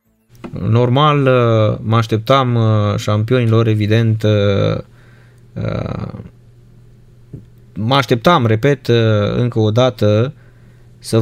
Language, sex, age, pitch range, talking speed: Romanian, male, 20-39, 110-125 Hz, 65 wpm